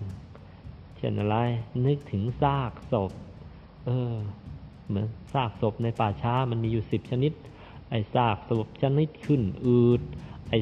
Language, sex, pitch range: Thai, male, 105-125 Hz